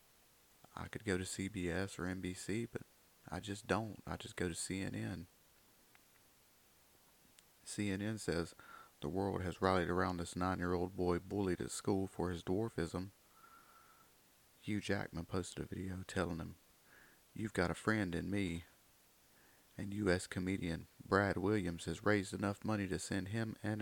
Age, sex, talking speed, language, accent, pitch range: 30-49, male, 145 wpm, English, American, 90-110 Hz